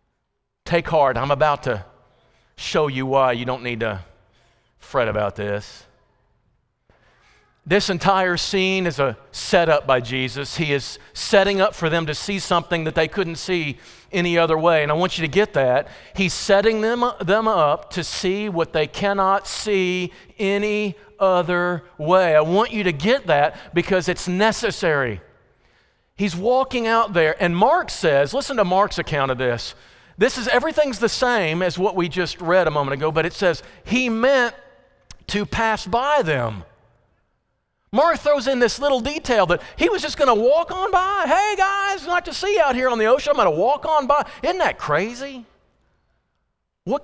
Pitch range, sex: 155-245 Hz, male